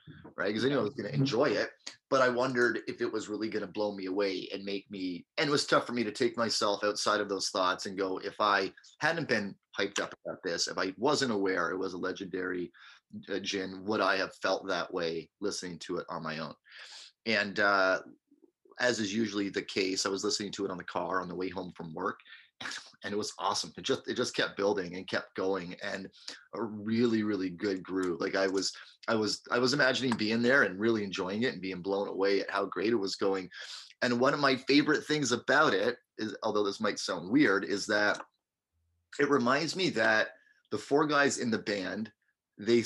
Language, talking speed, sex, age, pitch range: English, 225 wpm, male, 30-49, 95-120 Hz